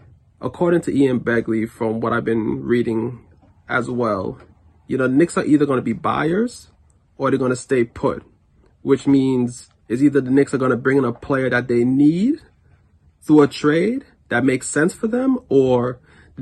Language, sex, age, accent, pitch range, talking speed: English, male, 30-49, American, 110-135 Hz, 190 wpm